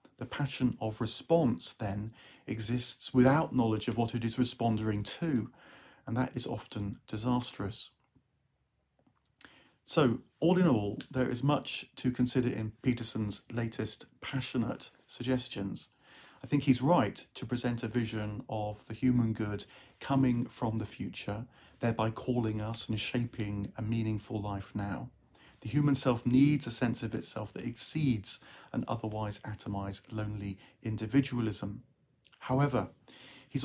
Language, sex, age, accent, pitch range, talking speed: English, male, 40-59, British, 110-130 Hz, 135 wpm